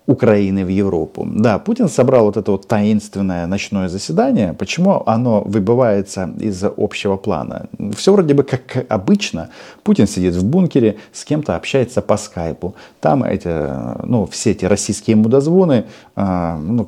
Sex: male